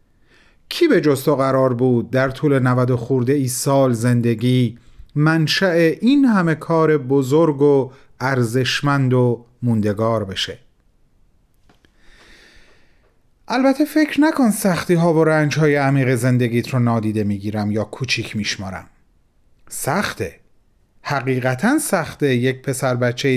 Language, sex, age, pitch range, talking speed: Persian, male, 40-59, 125-160 Hz, 115 wpm